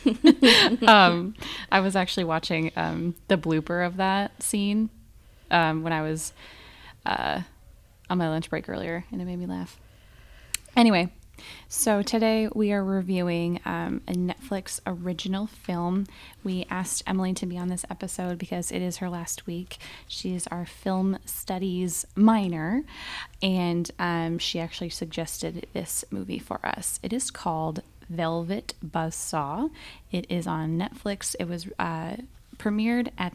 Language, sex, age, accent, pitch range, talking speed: English, female, 10-29, American, 165-190 Hz, 145 wpm